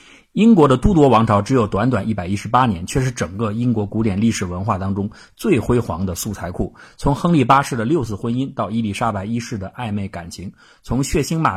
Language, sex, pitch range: Chinese, male, 100-125 Hz